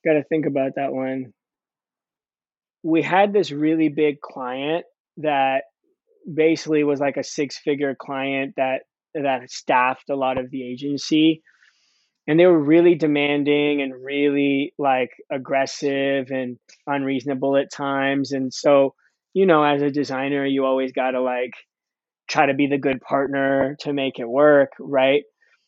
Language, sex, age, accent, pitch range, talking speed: English, male, 20-39, American, 135-150 Hz, 145 wpm